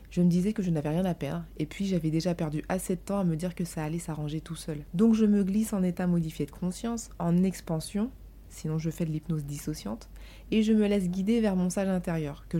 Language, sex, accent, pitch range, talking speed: French, female, French, 165-200 Hz, 250 wpm